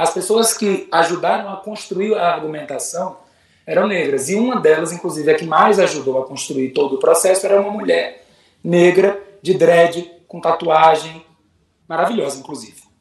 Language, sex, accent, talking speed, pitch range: Portuguese, male, Brazilian, 150 wpm, 160-200 Hz